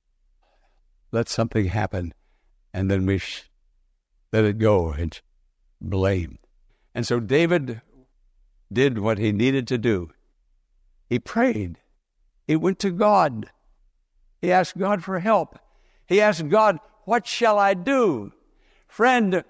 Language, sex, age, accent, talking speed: English, male, 60-79, American, 120 wpm